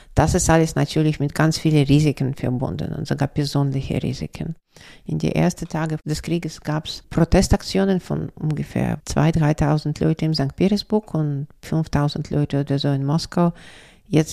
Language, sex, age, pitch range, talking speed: German, female, 50-69, 145-165 Hz, 160 wpm